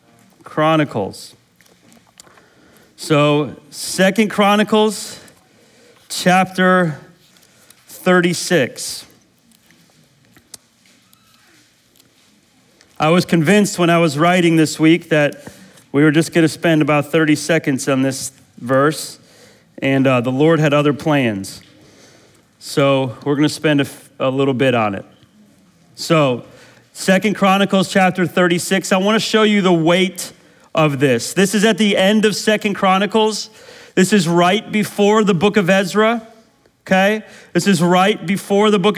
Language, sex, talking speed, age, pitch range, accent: English, male, 125 wpm, 40-59, 160-200 Hz, American